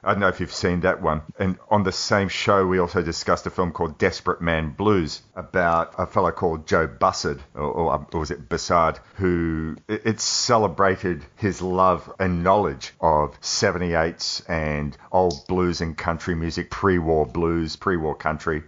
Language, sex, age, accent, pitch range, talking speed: English, male, 40-59, Australian, 80-95 Hz, 170 wpm